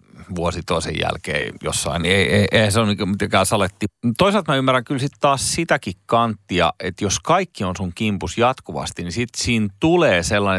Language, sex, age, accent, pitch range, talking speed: Finnish, male, 40-59, native, 90-115 Hz, 180 wpm